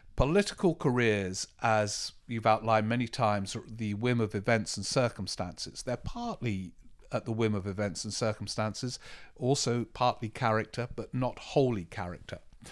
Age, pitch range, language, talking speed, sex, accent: 50-69, 110-145 Hz, English, 135 wpm, male, British